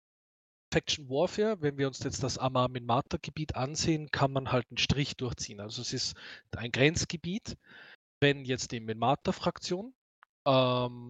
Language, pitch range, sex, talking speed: German, 120-150 Hz, male, 145 wpm